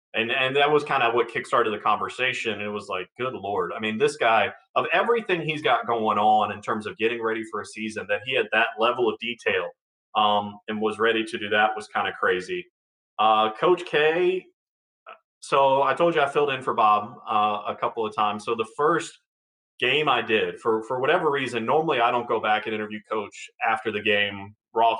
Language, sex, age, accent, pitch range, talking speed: English, male, 30-49, American, 105-125 Hz, 220 wpm